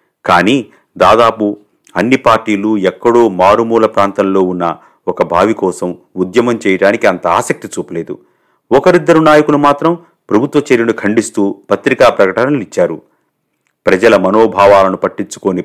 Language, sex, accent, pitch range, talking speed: Telugu, male, native, 100-135 Hz, 105 wpm